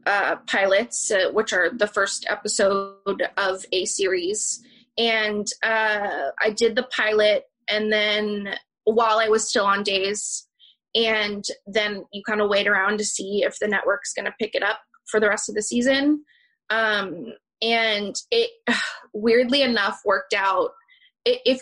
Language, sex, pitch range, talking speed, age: English, female, 205-260 Hz, 155 wpm, 20-39